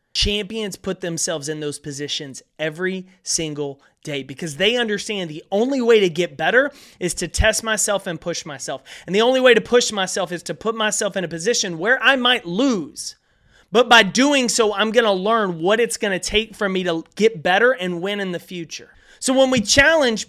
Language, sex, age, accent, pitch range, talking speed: English, male, 30-49, American, 185-260 Hz, 200 wpm